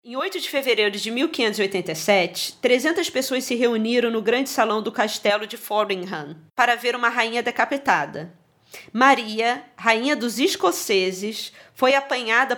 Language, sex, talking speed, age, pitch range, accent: Portuguese, female, 135 wpm, 20-39, 205-245 Hz, Brazilian